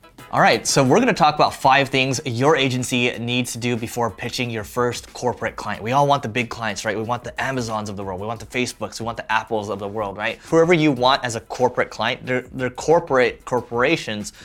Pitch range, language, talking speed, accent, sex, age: 110-130 Hz, English, 240 wpm, American, male, 20-39